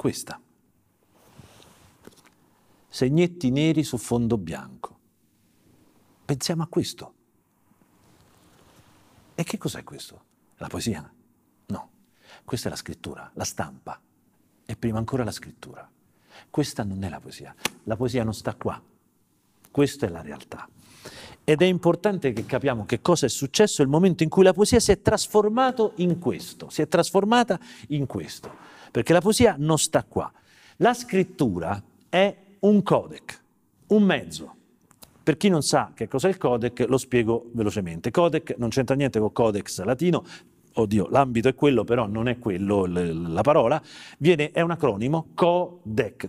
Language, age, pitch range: Italian, 50-69, 115-175 Hz